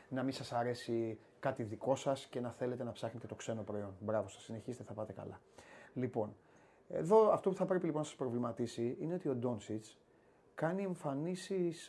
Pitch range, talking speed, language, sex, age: 120-175 Hz, 185 wpm, Greek, male, 30-49